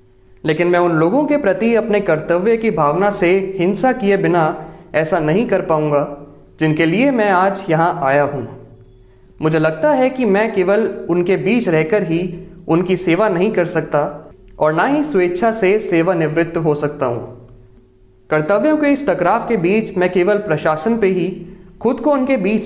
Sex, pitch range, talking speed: male, 155-205 Hz, 170 wpm